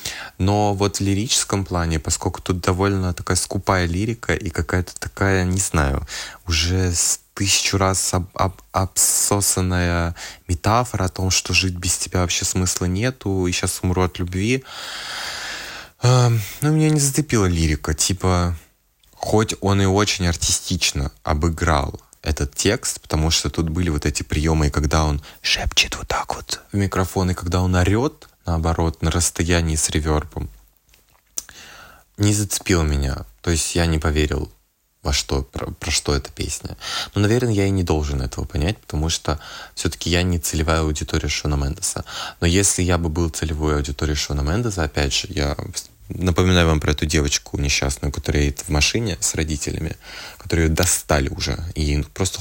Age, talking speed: 20-39, 155 wpm